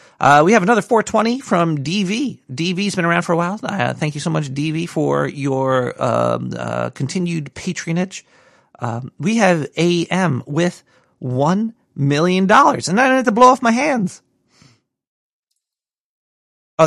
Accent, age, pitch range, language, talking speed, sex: American, 40-59, 135-200 Hz, English, 160 wpm, male